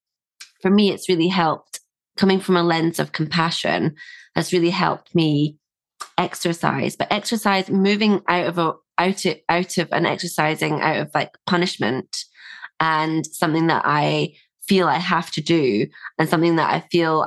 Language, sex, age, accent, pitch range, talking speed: English, female, 20-39, British, 160-195 Hz, 160 wpm